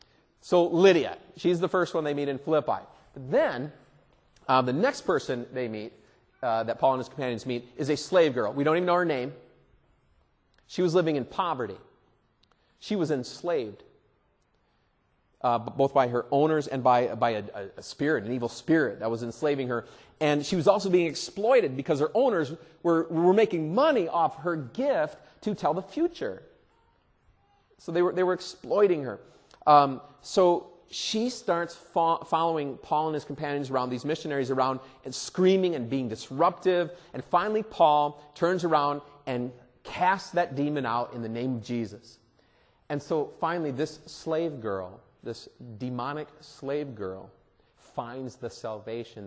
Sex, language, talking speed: male, English, 160 wpm